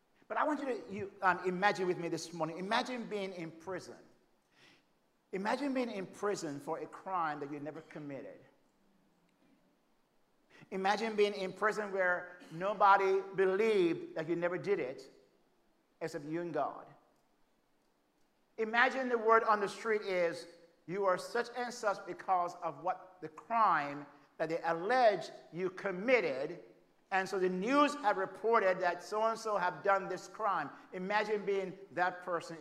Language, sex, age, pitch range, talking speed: English, male, 50-69, 175-230 Hz, 145 wpm